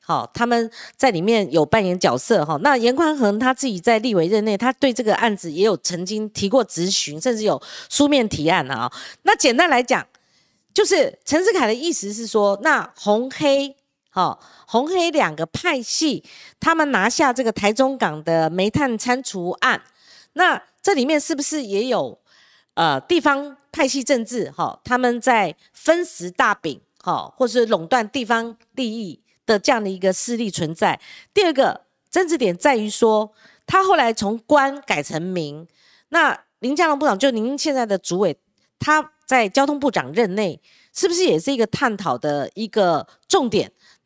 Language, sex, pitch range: Chinese, female, 210-285 Hz